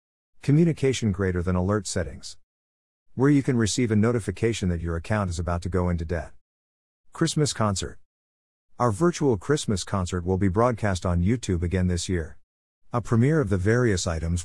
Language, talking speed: English, 165 wpm